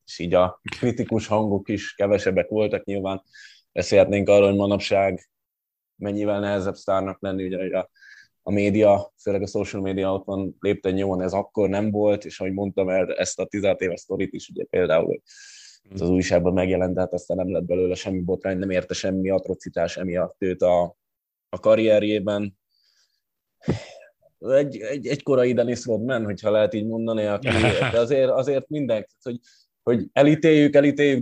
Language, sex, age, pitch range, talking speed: Hungarian, male, 20-39, 95-110 Hz, 160 wpm